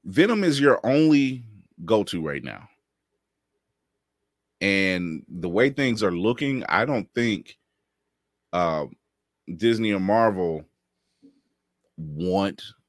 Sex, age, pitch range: male, 30-49, 75-110 Hz